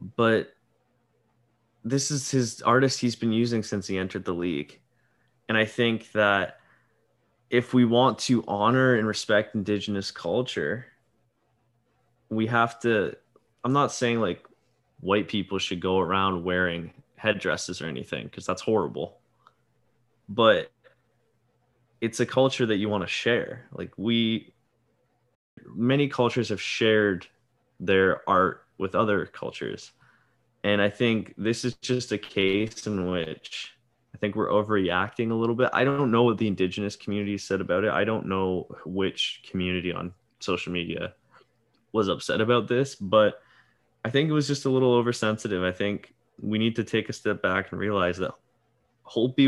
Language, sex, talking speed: English, male, 155 wpm